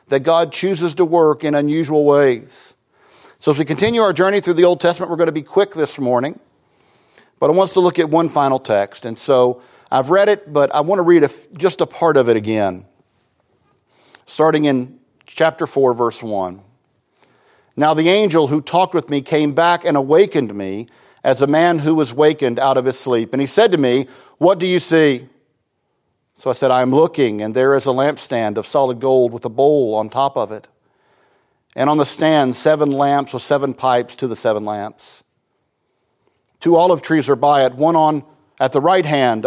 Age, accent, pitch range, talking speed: 50-69, American, 125-160 Hz, 205 wpm